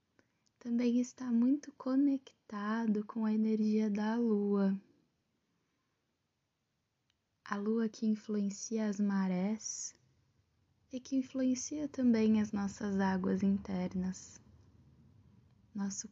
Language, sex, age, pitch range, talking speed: Portuguese, female, 10-29, 195-225 Hz, 90 wpm